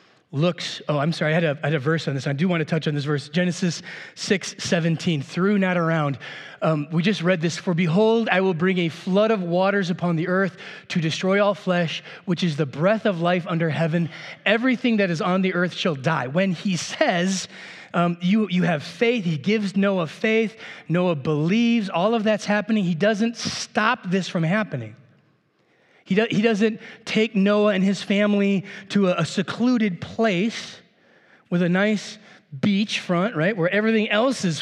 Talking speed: 185 wpm